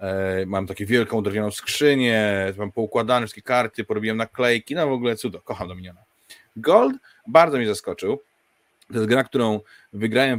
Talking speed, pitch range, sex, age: 155 wpm, 100-125 Hz, male, 20-39